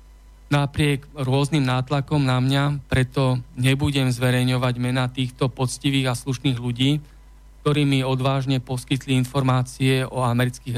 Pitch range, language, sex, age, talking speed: 125-140 Hz, Slovak, male, 40-59, 115 wpm